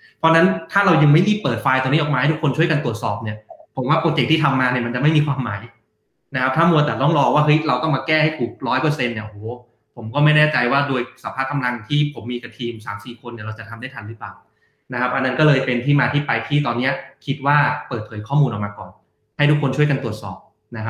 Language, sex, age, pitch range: Thai, male, 20-39, 120-145 Hz